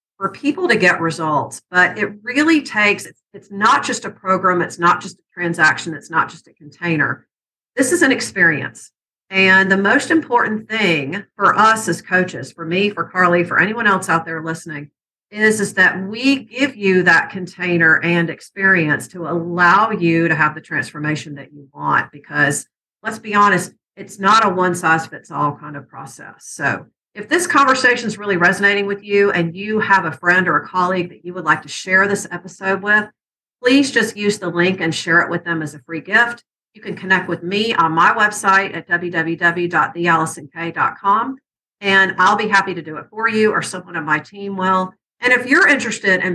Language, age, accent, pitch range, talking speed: English, 50-69, American, 165-205 Hz, 195 wpm